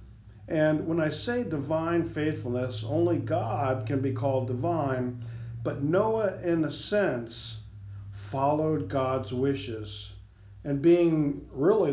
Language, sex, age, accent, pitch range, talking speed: English, male, 50-69, American, 120-155 Hz, 115 wpm